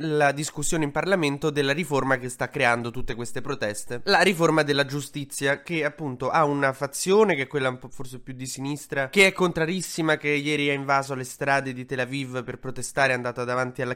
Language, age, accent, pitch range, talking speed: Italian, 20-39, native, 130-165 Hz, 200 wpm